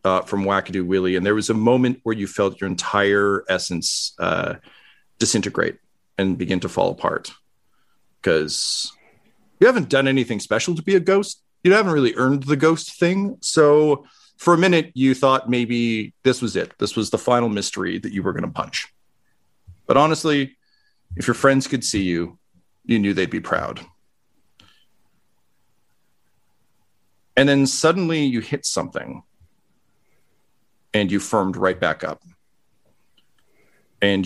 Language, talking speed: English, 150 wpm